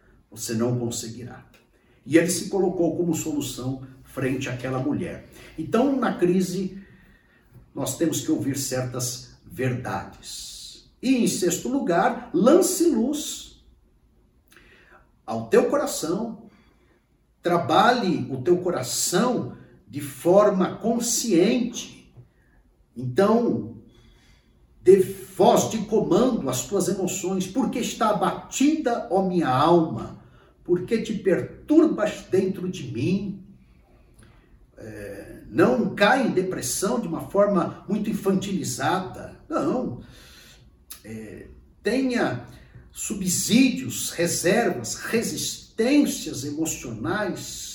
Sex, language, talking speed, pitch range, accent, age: male, Portuguese, 95 wpm, 130-205 Hz, Brazilian, 60-79